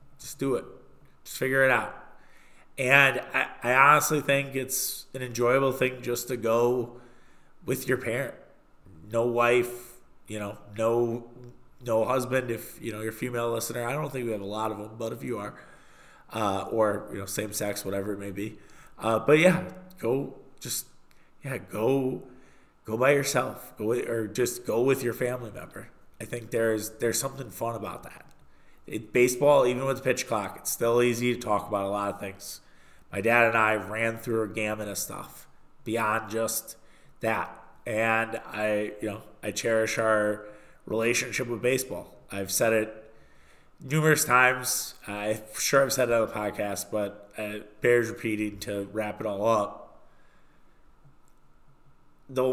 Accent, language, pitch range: American, English, 110-125 Hz